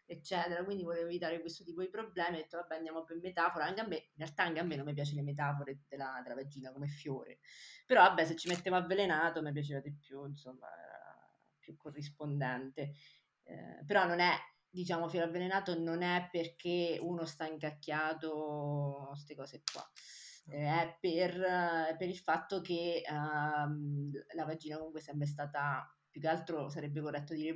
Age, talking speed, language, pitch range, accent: 20-39, 180 wpm, Italian, 145-175 Hz, native